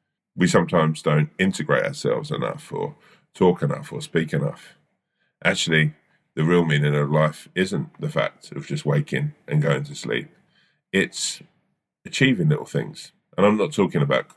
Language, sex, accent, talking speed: English, male, British, 155 wpm